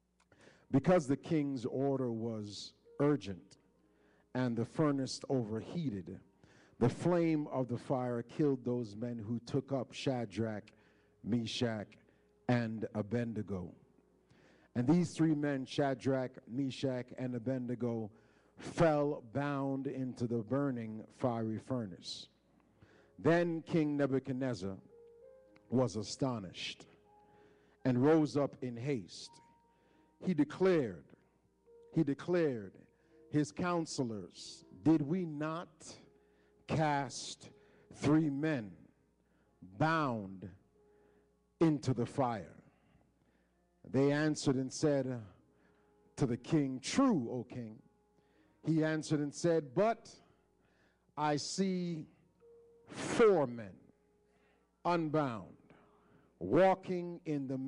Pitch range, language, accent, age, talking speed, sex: 115-155 Hz, English, American, 50-69, 95 wpm, male